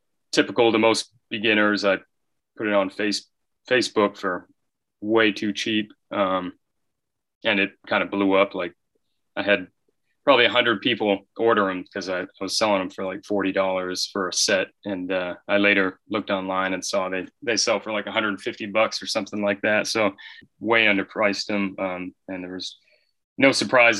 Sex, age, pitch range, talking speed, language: male, 20-39, 95-110 Hz, 185 wpm, English